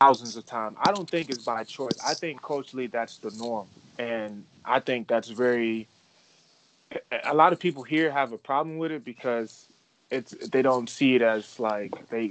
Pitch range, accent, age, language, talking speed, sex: 115-145 Hz, American, 20-39, English, 190 wpm, male